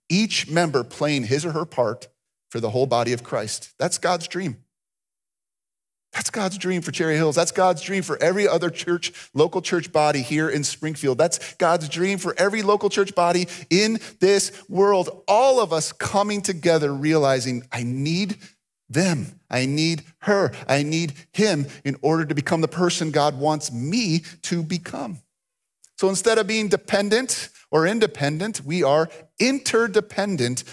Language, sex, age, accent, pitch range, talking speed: English, male, 40-59, American, 130-180 Hz, 160 wpm